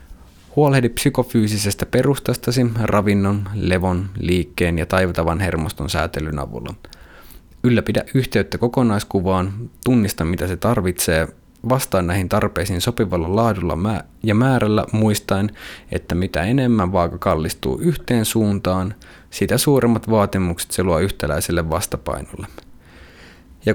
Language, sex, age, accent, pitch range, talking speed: Finnish, male, 20-39, native, 85-115 Hz, 105 wpm